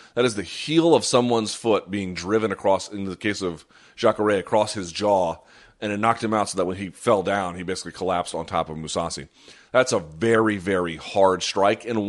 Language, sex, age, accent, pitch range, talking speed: English, male, 30-49, American, 95-115 Hz, 215 wpm